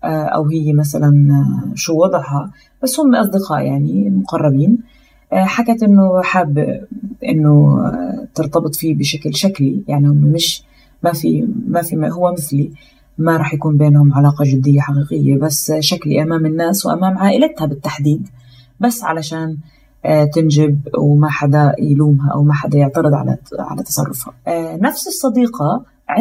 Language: Arabic